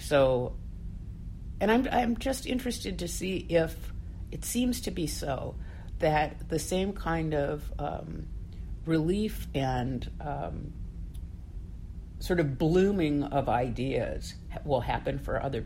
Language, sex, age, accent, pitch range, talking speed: English, female, 50-69, American, 115-185 Hz, 125 wpm